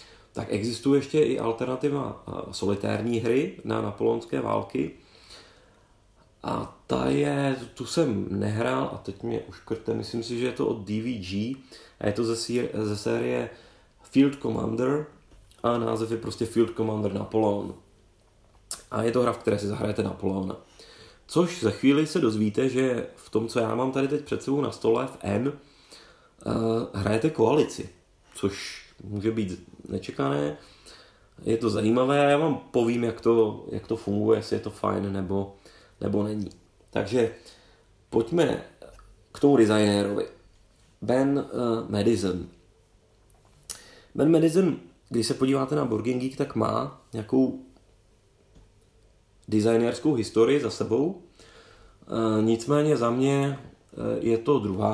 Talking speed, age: 130 wpm, 30-49